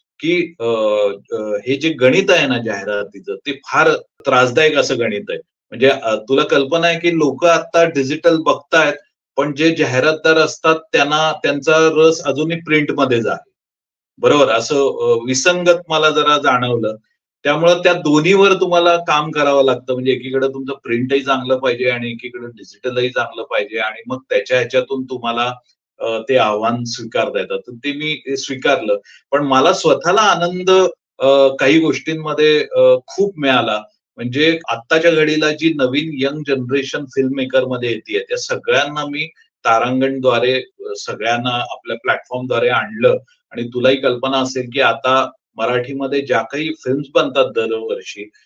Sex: male